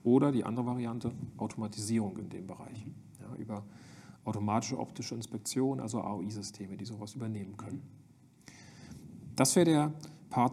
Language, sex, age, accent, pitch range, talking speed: German, male, 40-59, German, 110-145 Hz, 130 wpm